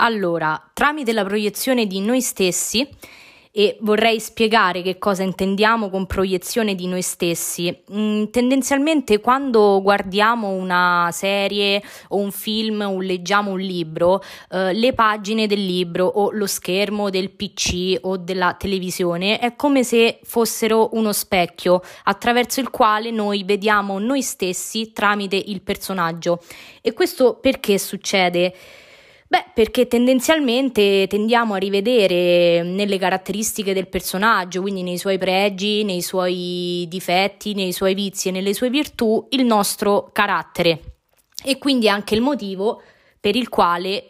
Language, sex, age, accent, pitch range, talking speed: Italian, female, 20-39, native, 185-230 Hz, 135 wpm